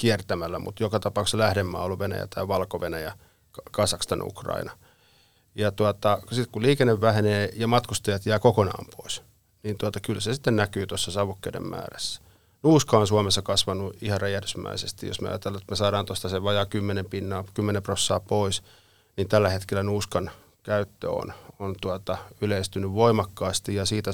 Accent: native